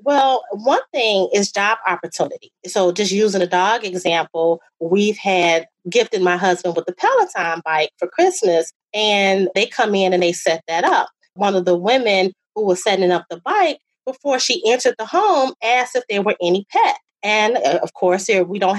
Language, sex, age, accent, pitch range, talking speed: English, female, 30-49, American, 190-260 Hz, 185 wpm